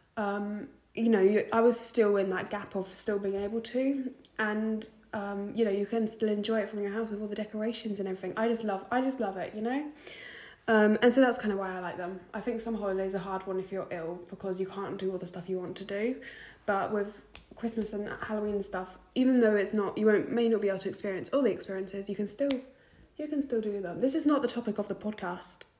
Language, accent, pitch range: English, British, 195-230 Hz